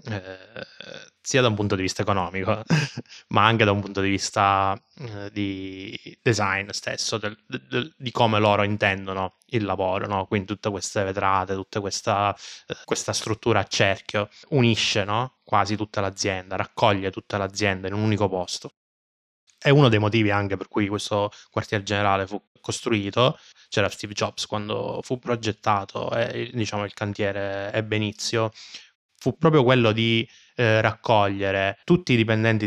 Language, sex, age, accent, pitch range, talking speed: Italian, male, 20-39, native, 100-115 Hz, 155 wpm